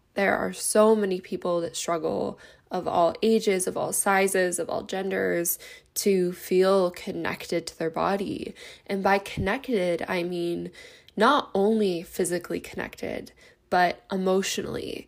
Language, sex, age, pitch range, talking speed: English, female, 10-29, 180-205 Hz, 130 wpm